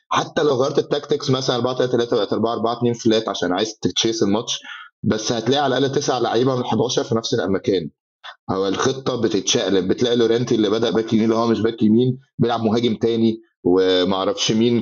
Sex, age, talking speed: male, 30-49, 170 wpm